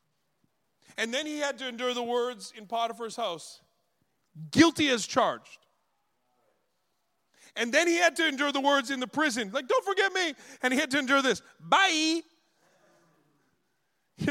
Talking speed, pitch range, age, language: 155 wpm, 190-300 Hz, 40-59, English